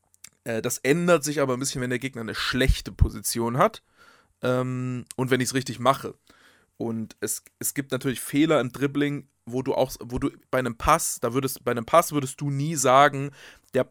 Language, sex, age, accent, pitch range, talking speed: German, male, 20-39, German, 125-150 Hz, 200 wpm